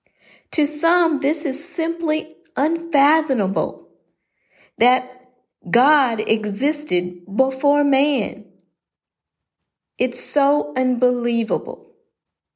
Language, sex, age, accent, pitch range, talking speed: English, female, 50-69, American, 205-280 Hz, 65 wpm